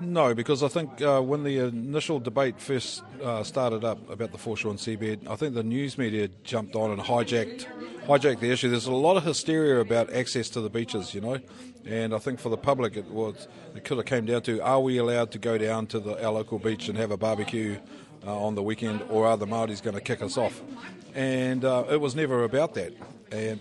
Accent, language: Australian, English